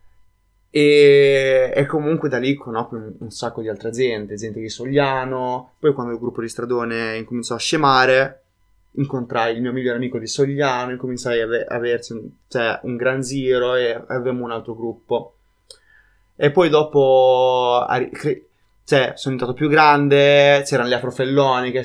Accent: native